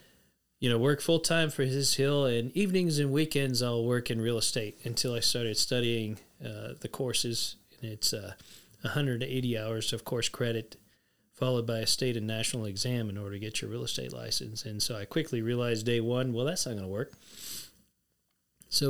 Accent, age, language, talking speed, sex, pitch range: American, 40-59, English, 190 wpm, male, 110-130 Hz